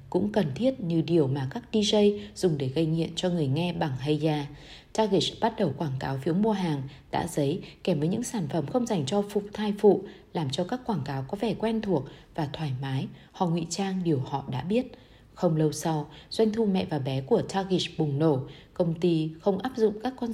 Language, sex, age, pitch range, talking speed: Vietnamese, female, 20-39, 150-200 Hz, 225 wpm